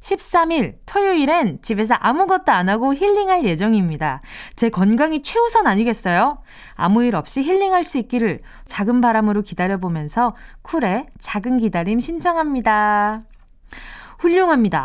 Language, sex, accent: Korean, female, native